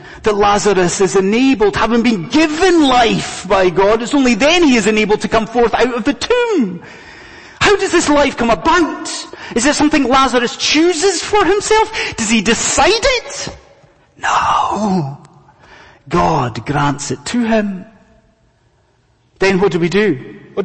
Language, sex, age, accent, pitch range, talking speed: English, male, 30-49, British, 150-235 Hz, 150 wpm